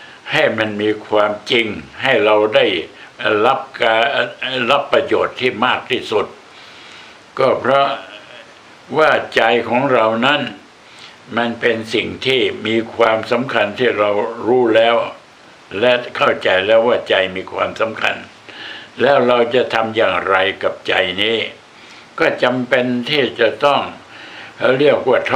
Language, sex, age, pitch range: Thai, male, 60-79, 115-140 Hz